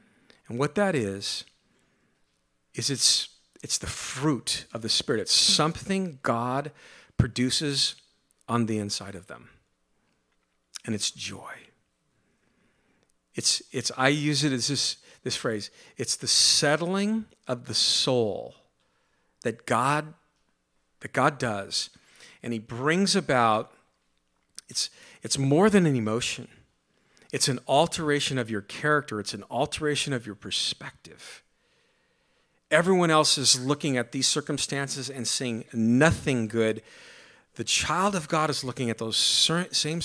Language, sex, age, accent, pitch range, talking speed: English, male, 50-69, American, 115-150 Hz, 130 wpm